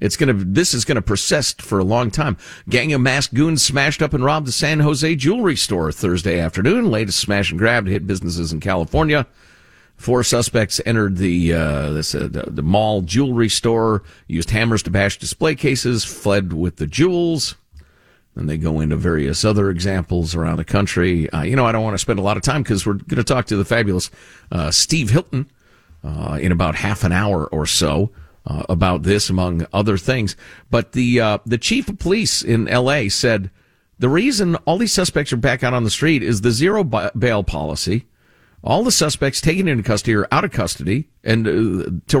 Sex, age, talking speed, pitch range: male, 50-69, 200 wpm, 90-140 Hz